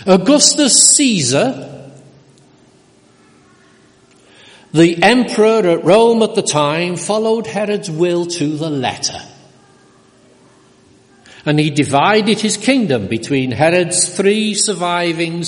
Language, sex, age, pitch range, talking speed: English, male, 60-79, 140-215 Hz, 95 wpm